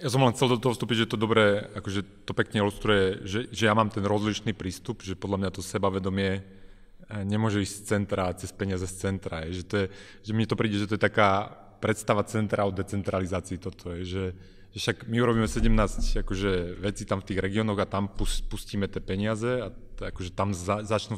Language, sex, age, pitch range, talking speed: Slovak, male, 30-49, 95-115 Hz, 210 wpm